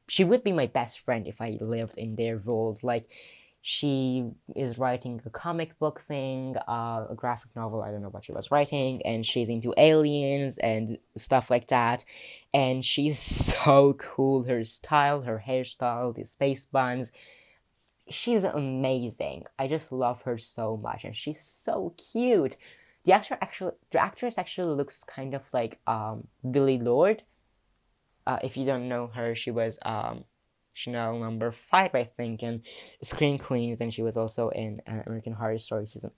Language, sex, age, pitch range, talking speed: English, female, 10-29, 115-140 Hz, 170 wpm